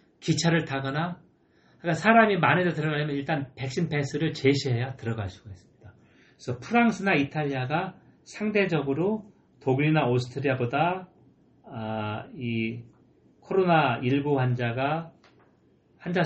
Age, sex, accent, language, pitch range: 40-59, male, native, Korean, 105-140 Hz